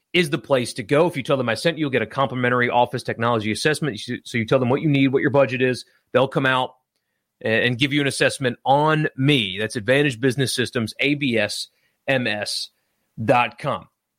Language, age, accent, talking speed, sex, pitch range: English, 30-49, American, 190 wpm, male, 125-165 Hz